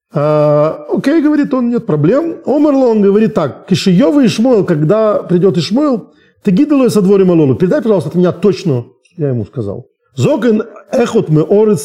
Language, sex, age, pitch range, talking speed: Russian, male, 40-59, 135-210 Hz, 150 wpm